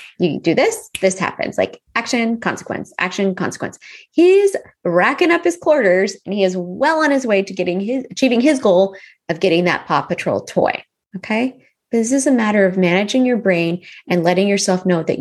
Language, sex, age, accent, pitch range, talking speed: English, female, 20-39, American, 180-255 Hz, 195 wpm